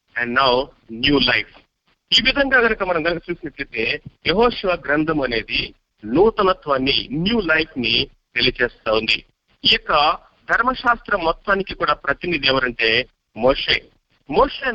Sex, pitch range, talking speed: male, 130-180 Hz, 105 wpm